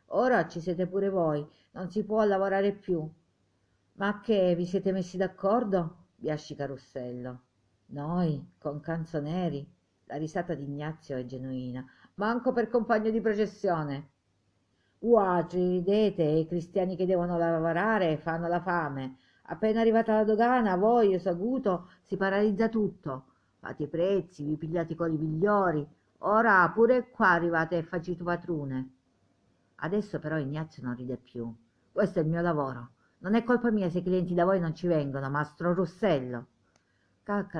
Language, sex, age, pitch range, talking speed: Italian, female, 50-69, 130-190 Hz, 155 wpm